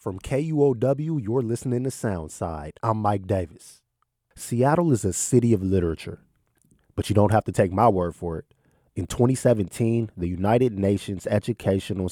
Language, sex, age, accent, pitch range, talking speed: English, male, 30-49, American, 90-120 Hz, 155 wpm